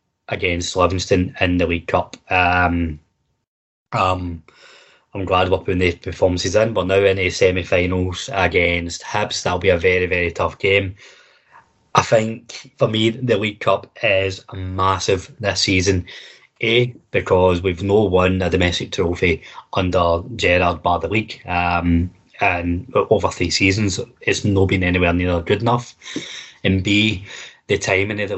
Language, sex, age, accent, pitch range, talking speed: English, male, 20-39, British, 90-100 Hz, 150 wpm